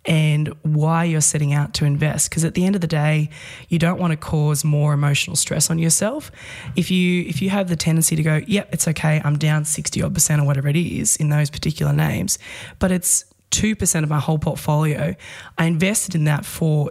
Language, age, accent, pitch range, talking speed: English, 20-39, Australian, 150-170 Hz, 220 wpm